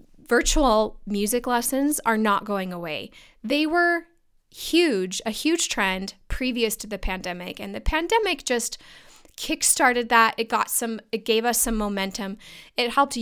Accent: American